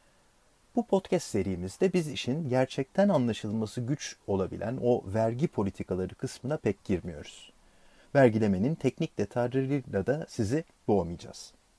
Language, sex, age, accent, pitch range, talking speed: Turkish, male, 40-59, native, 95-155 Hz, 105 wpm